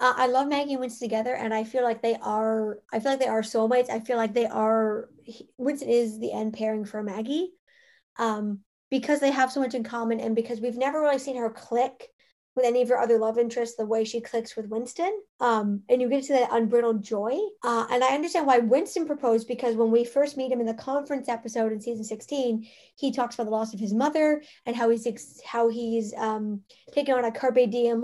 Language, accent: English, American